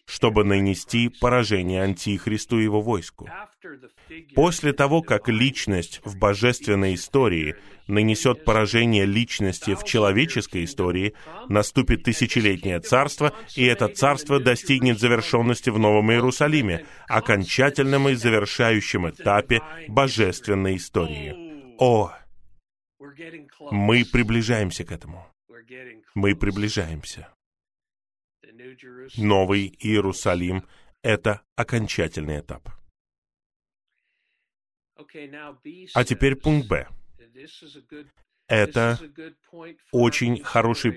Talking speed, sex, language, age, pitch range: 80 wpm, male, Russian, 20-39, 100-135 Hz